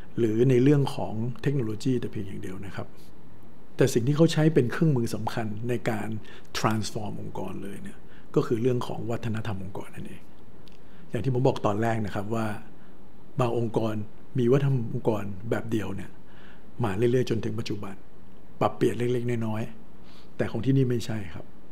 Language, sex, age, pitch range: Thai, male, 60-79, 110-135 Hz